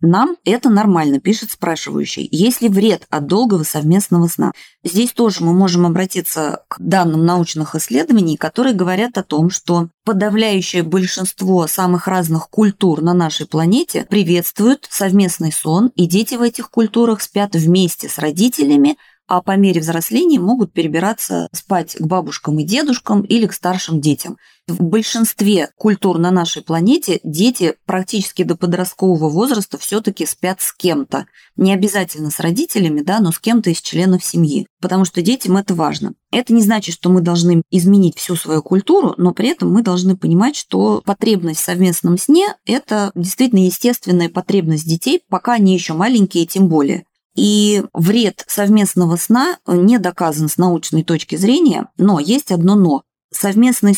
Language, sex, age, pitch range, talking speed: Russian, female, 20-39, 170-220 Hz, 155 wpm